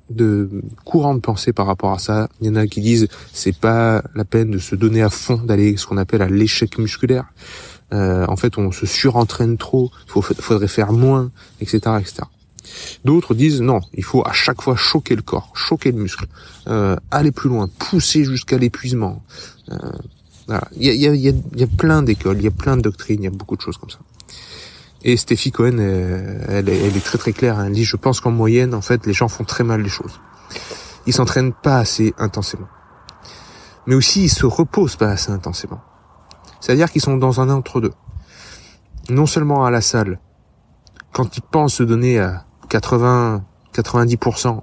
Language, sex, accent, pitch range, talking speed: French, male, French, 100-125 Hz, 200 wpm